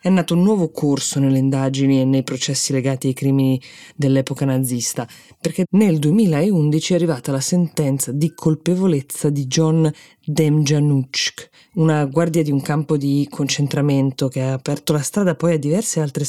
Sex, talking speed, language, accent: female, 160 wpm, Italian, native